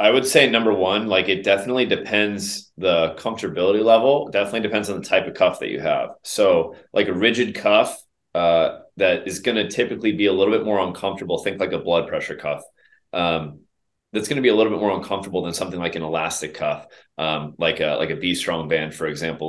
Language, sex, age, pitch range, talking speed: English, male, 30-49, 80-105 Hz, 220 wpm